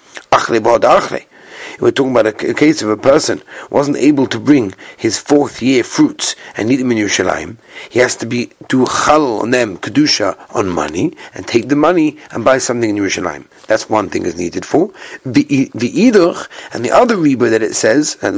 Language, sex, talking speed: English, male, 185 wpm